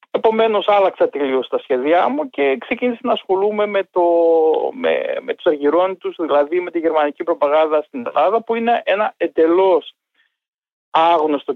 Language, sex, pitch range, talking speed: Greek, male, 165-250 Hz, 150 wpm